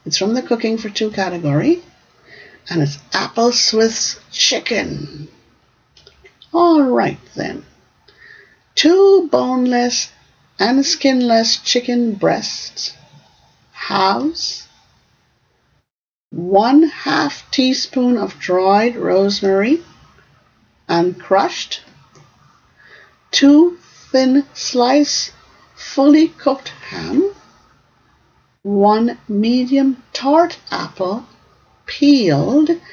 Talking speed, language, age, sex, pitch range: 75 wpm, English, 50-69, female, 200-280 Hz